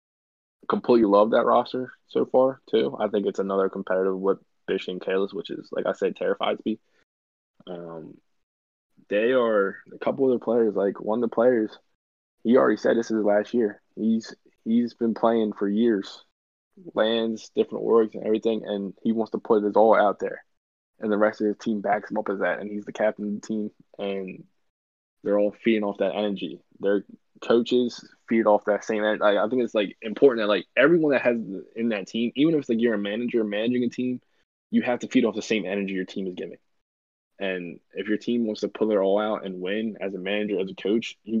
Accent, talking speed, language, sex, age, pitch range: American, 220 wpm, English, male, 10-29, 95-115 Hz